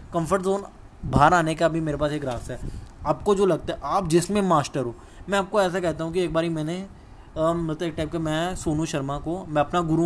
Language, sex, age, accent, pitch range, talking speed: Hindi, male, 10-29, native, 140-170 Hz, 235 wpm